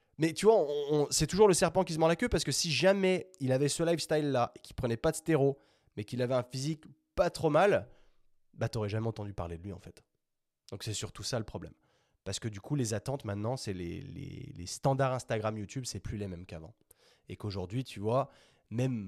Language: French